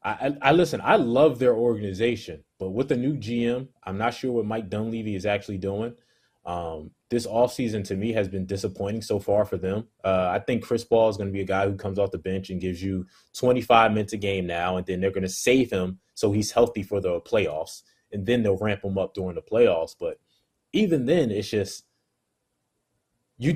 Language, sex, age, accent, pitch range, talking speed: English, male, 20-39, American, 100-130 Hz, 215 wpm